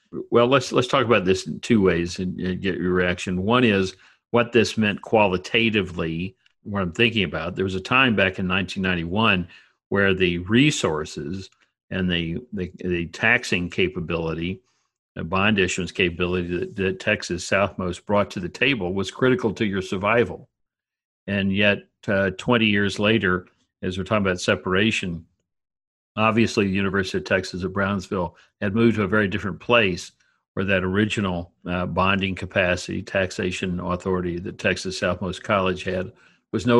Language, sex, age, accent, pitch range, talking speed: English, male, 60-79, American, 90-110 Hz, 160 wpm